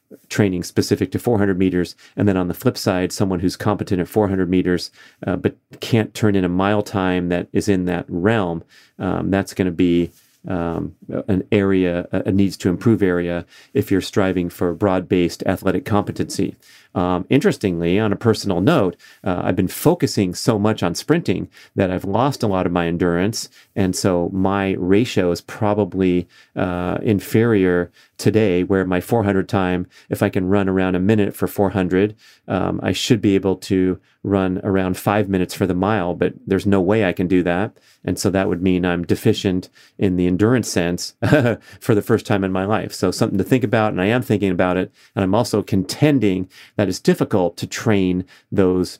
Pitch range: 90-105 Hz